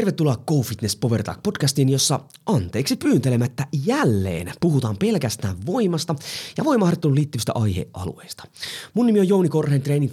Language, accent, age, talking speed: Finnish, native, 30-49, 125 wpm